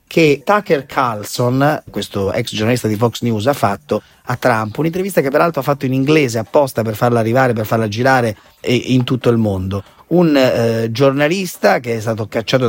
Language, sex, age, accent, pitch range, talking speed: Italian, male, 30-49, native, 115-165 Hz, 180 wpm